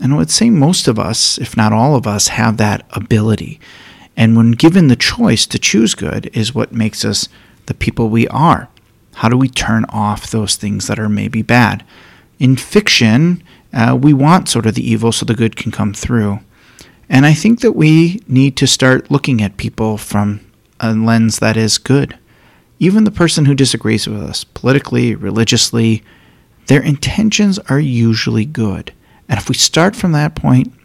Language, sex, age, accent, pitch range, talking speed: English, male, 40-59, American, 110-135 Hz, 185 wpm